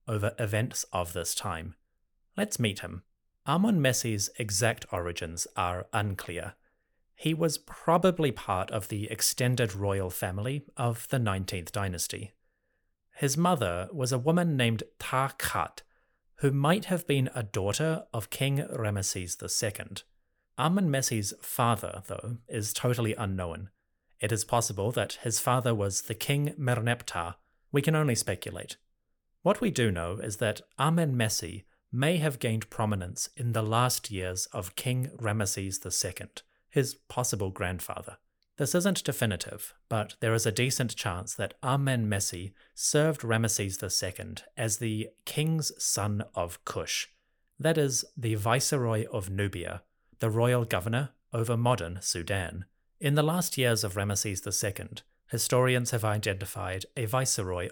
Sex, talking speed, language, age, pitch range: male, 135 wpm, English, 30-49, 100-130 Hz